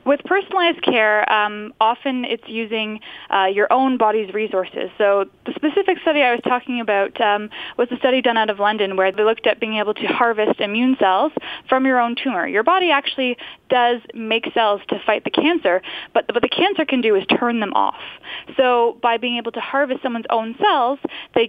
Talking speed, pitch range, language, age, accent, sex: 200 wpm, 210-285 Hz, English, 20-39, American, female